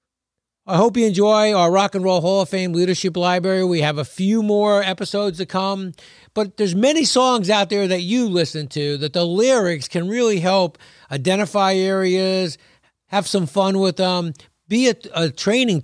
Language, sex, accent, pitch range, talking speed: English, male, American, 155-195 Hz, 180 wpm